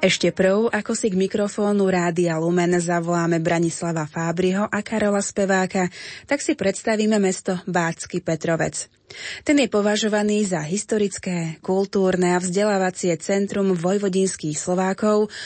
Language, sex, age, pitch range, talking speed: Slovak, female, 20-39, 175-205 Hz, 120 wpm